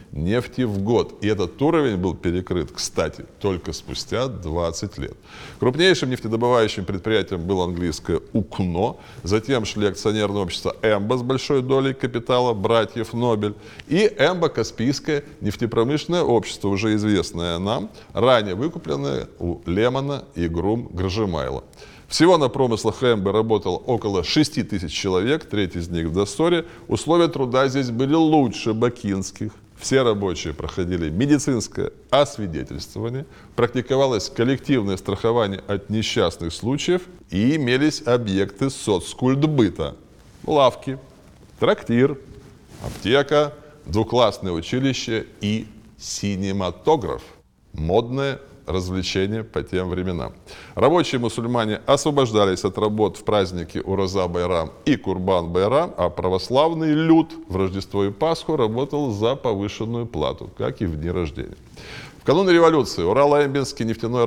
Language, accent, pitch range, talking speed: Russian, native, 95-135 Hz, 115 wpm